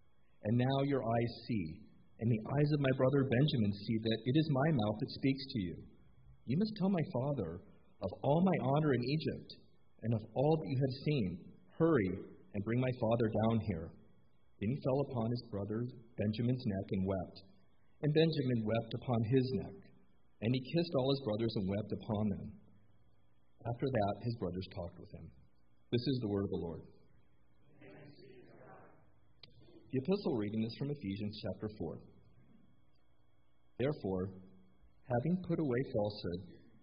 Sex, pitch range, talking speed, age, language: male, 105-140 Hz, 165 wpm, 50-69, English